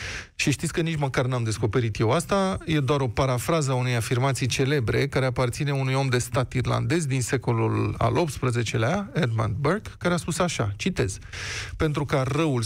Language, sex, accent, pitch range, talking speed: Romanian, male, native, 120-165 Hz, 175 wpm